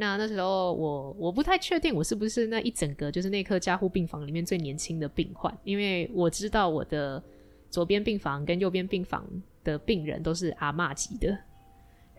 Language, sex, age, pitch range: Chinese, female, 20-39, 155-185 Hz